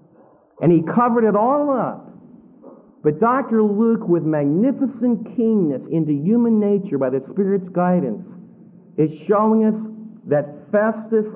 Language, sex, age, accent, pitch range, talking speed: English, male, 50-69, American, 175-235 Hz, 125 wpm